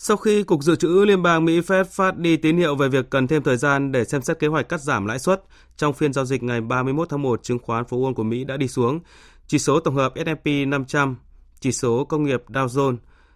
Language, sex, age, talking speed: Vietnamese, male, 20-39, 255 wpm